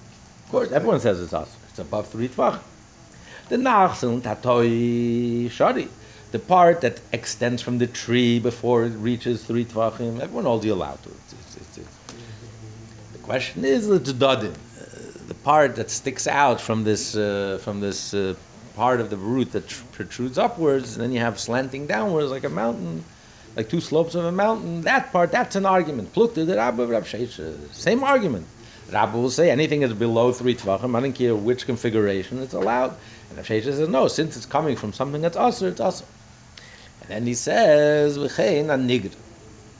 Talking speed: 160 wpm